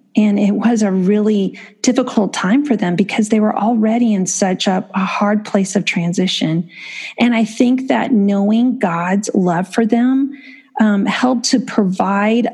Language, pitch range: English, 185-230 Hz